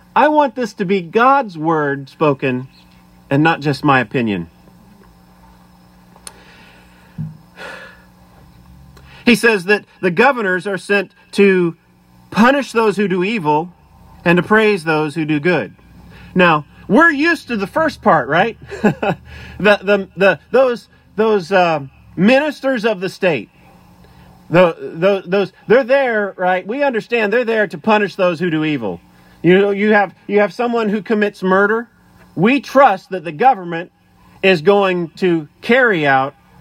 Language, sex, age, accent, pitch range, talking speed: English, male, 40-59, American, 155-215 Hz, 145 wpm